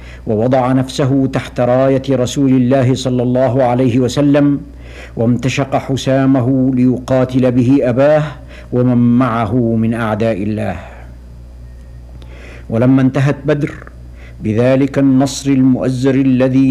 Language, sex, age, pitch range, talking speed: Arabic, male, 60-79, 110-135 Hz, 95 wpm